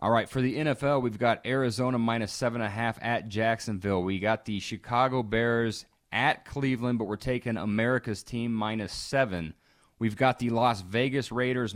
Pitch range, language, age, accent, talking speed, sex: 105-130 Hz, English, 30-49, American, 165 wpm, male